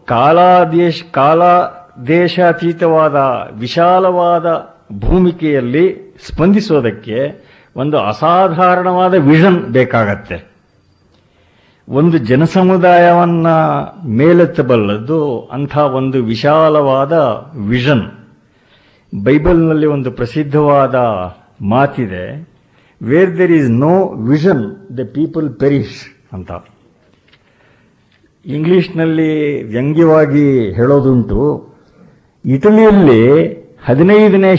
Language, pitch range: Kannada, 135-175 Hz